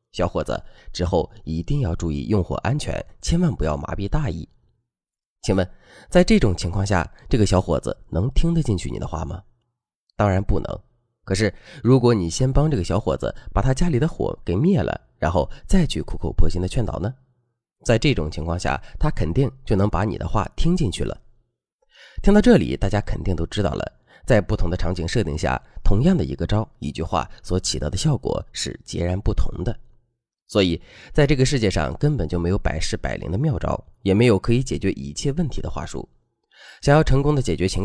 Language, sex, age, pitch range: Chinese, male, 20-39, 90-125 Hz